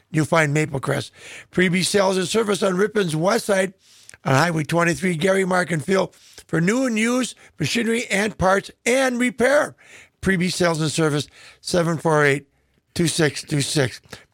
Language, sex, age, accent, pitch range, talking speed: English, male, 50-69, American, 165-215 Hz, 135 wpm